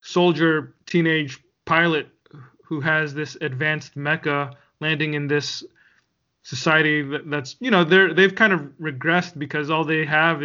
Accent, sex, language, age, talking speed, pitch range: American, male, English, 20-39, 145 wpm, 145-165 Hz